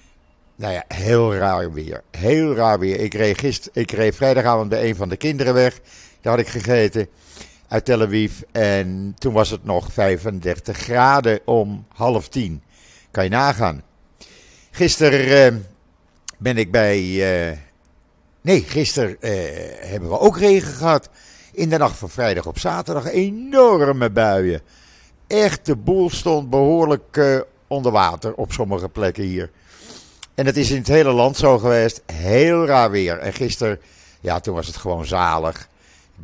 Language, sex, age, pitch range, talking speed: Dutch, male, 50-69, 95-130 Hz, 150 wpm